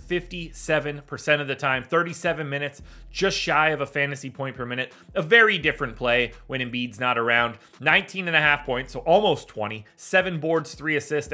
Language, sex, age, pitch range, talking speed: English, male, 30-49, 130-175 Hz, 175 wpm